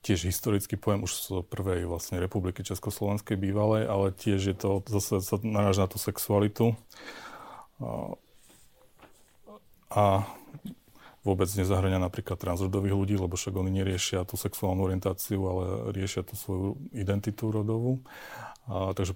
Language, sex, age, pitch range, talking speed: Slovak, male, 40-59, 95-105 Hz, 125 wpm